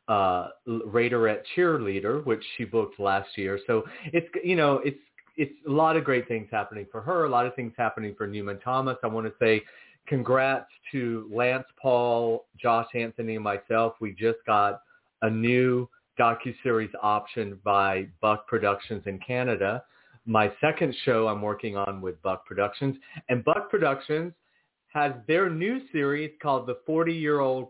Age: 40-59